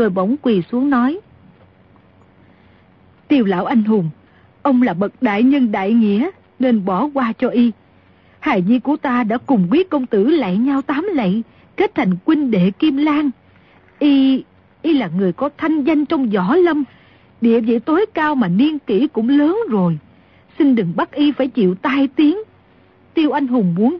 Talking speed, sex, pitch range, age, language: 180 wpm, female, 200-285 Hz, 50-69, Vietnamese